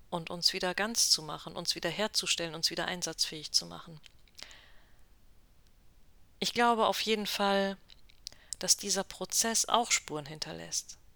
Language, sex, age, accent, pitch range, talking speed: German, female, 40-59, German, 165-205 Hz, 135 wpm